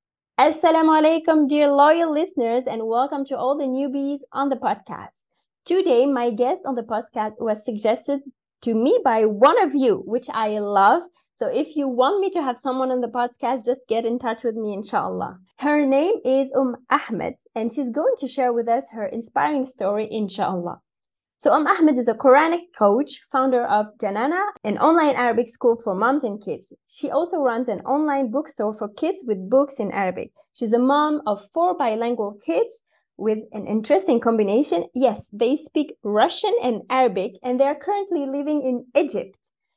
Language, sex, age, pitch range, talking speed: English, female, 20-39, 225-290 Hz, 180 wpm